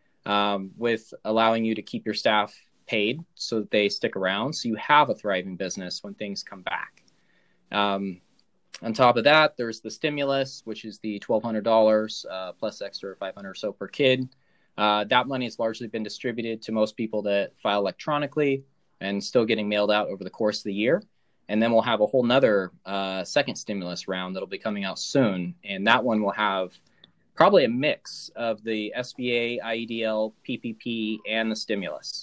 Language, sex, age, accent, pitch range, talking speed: English, male, 20-39, American, 105-125 Hz, 185 wpm